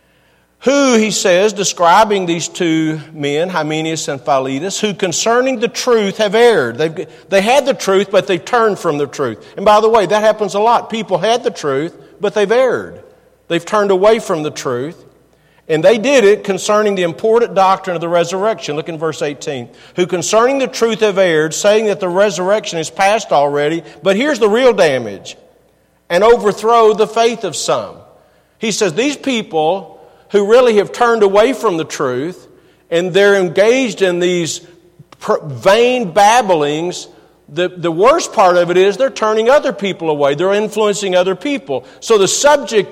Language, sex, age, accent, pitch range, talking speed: English, male, 50-69, American, 170-225 Hz, 175 wpm